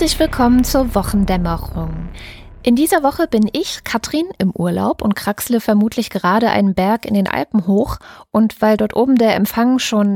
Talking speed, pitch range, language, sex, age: 170 wpm, 180-225 Hz, German, female, 20-39